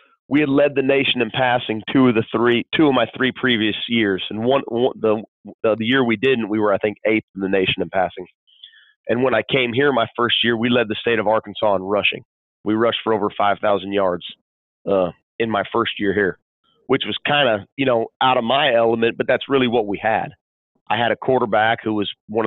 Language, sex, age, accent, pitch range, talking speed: English, male, 40-59, American, 105-125 Hz, 230 wpm